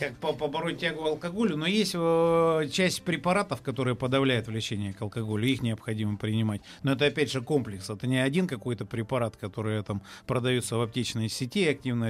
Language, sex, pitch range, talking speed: Russian, male, 120-150 Hz, 165 wpm